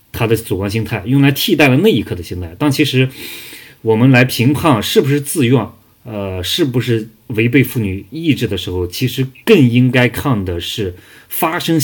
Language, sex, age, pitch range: Chinese, male, 20-39, 100-130 Hz